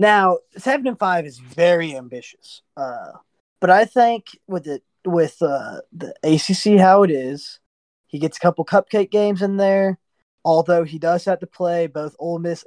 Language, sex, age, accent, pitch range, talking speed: English, male, 20-39, American, 155-185 Hz, 175 wpm